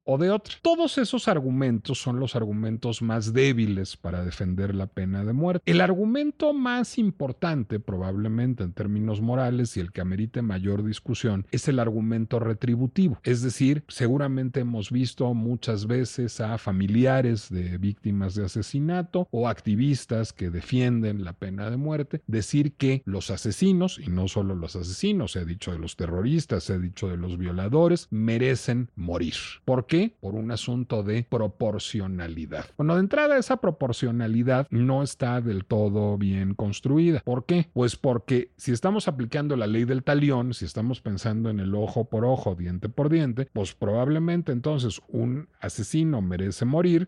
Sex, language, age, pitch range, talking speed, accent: male, Spanish, 40-59, 105-135 Hz, 155 wpm, Mexican